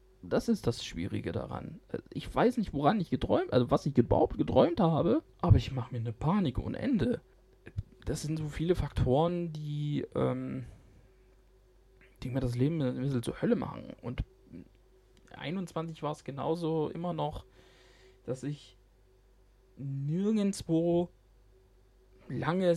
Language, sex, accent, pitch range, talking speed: German, male, German, 105-155 Hz, 135 wpm